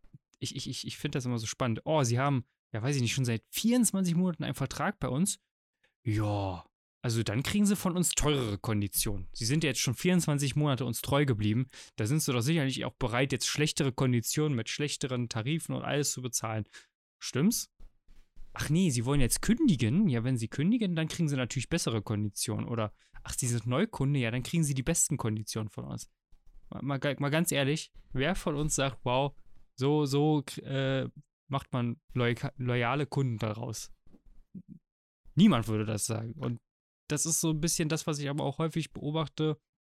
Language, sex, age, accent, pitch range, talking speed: German, male, 20-39, German, 120-150 Hz, 190 wpm